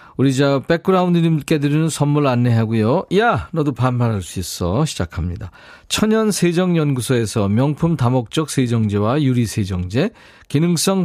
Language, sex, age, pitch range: Korean, male, 40-59, 120-165 Hz